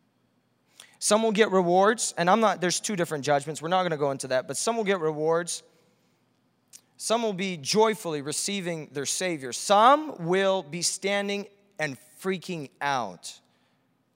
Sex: male